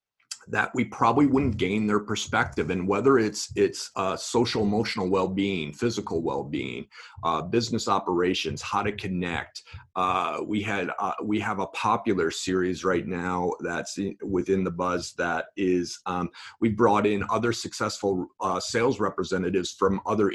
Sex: male